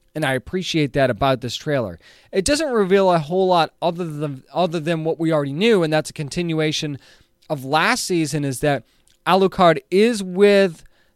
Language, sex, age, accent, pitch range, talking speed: English, male, 20-39, American, 150-190 Hz, 175 wpm